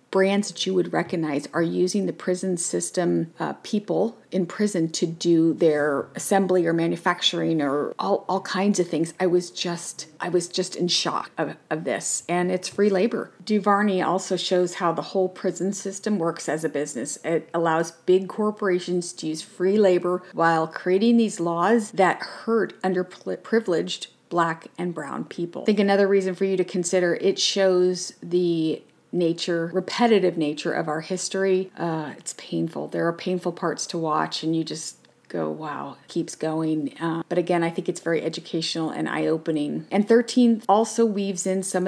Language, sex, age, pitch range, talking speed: English, female, 40-59, 155-185 Hz, 175 wpm